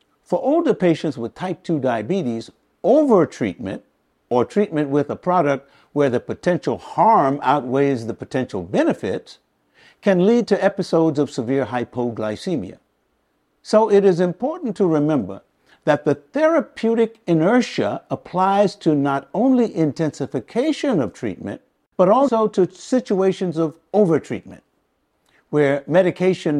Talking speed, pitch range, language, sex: 120 wpm, 140-205 Hz, English, male